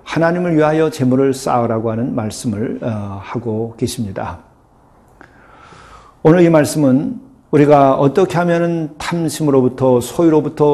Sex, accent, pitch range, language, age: male, native, 125-150 Hz, Korean, 40-59